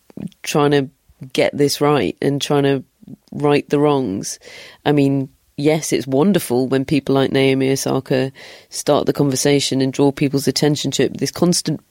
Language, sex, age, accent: English, female, 30-49, British